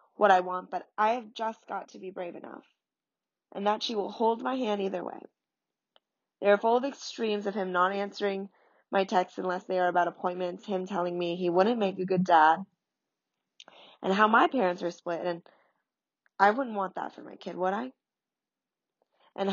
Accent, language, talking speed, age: American, English, 195 wpm, 20-39